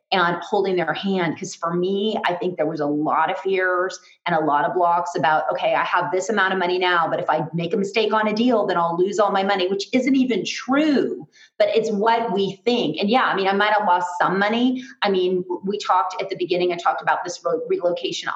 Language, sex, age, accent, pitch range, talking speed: English, female, 30-49, American, 175-220 Hz, 250 wpm